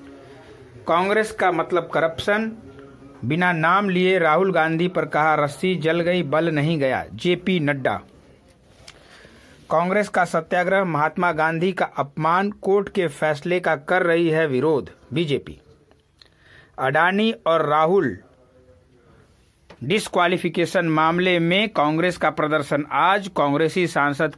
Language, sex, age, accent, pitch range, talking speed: Hindi, male, 60-79, native, 145-180 Hz, 115 wpm